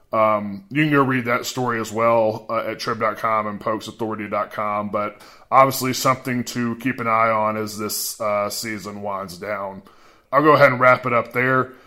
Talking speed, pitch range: 180 wpm, 110-125 Hz